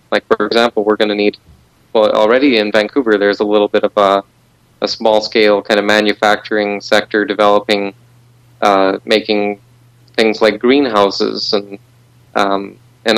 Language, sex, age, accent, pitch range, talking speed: English, male, 30-49, American, 105-120 Hz, 145 wpm